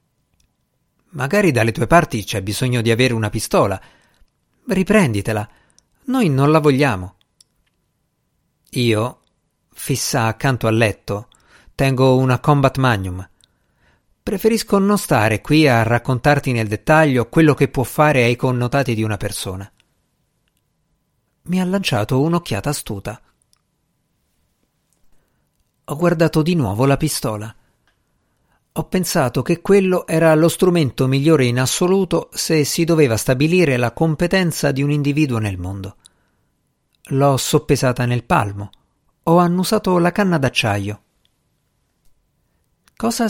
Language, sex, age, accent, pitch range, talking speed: Italian, male, 50-69, native, 110-160 Hz, 115 wpm